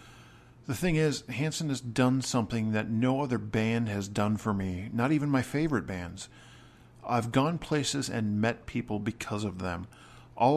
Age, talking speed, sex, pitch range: 50-69, 170 wpm, male, 110-130 Hz